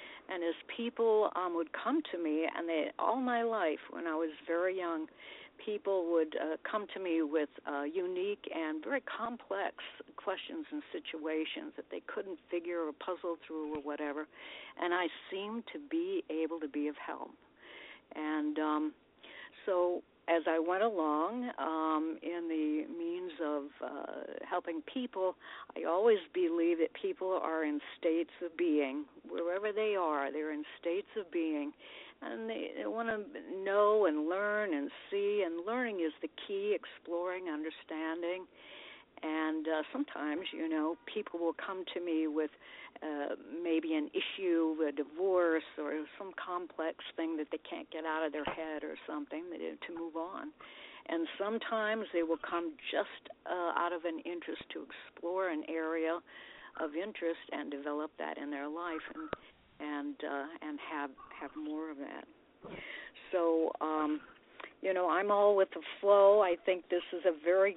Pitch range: 160-235 Hz